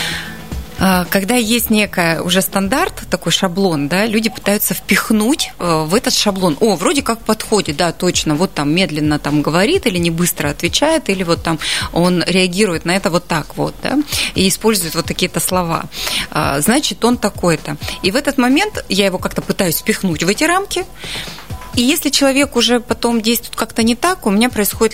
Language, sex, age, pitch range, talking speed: Russian, female, 20-39, 185-225 Hz, 175 wpm